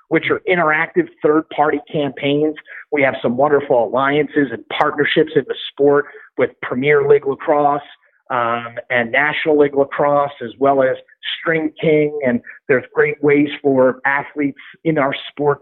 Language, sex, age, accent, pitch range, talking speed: English, male, 40-59, American, 140-160 Hz, 145 wpm